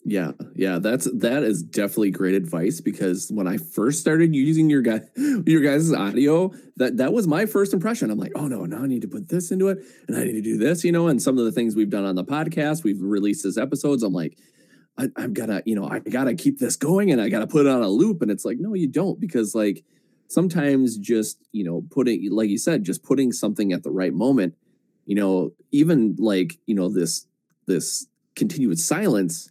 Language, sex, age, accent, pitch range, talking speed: English, male, 20-39, American, 100-160 Hz, 235 wpm